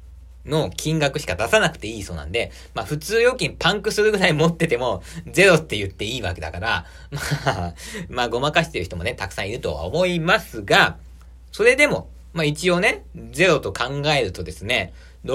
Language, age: Japanese, 40-59